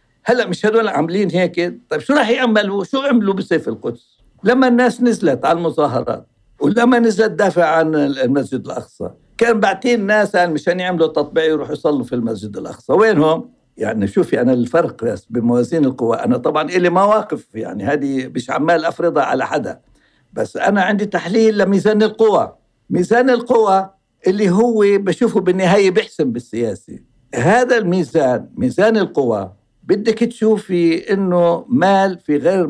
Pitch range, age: 160-220 Hz, 60-79